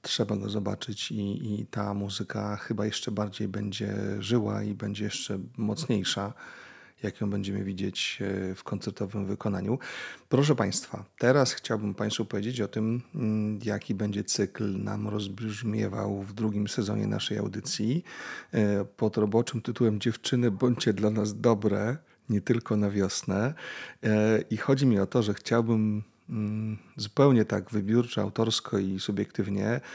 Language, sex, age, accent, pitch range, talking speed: Polish, male, 30-49, native, 100-115 Hz, 130 wpm